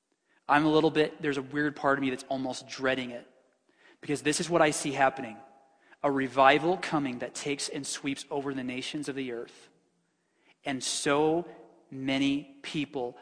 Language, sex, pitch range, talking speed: English, male, 130-145 Hz, 170 wpm